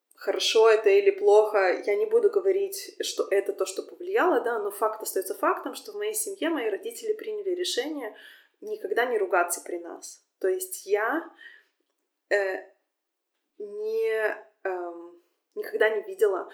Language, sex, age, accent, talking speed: Russian, female, 20-39, native, 145 wpm